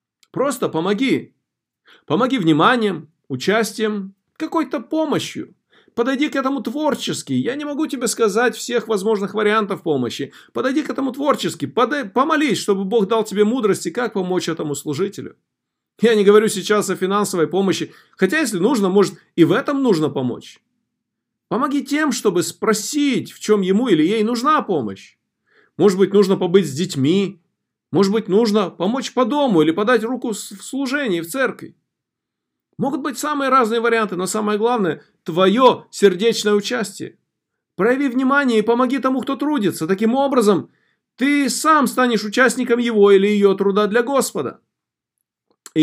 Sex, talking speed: male, 145 wpm